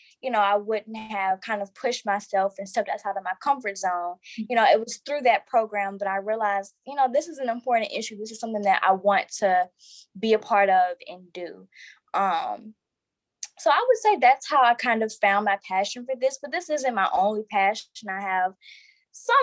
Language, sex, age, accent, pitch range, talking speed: English, female, 10-29, American, 190-240 Hz, 215 wpm